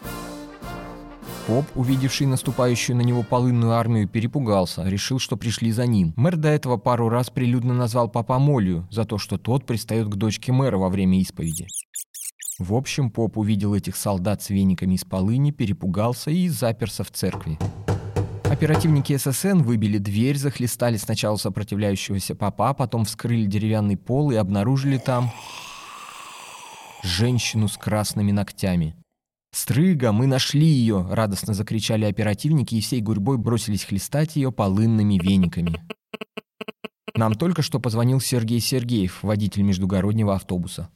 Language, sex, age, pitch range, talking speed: Russian, male, 20-39, 100-125 Hz, 135 wpm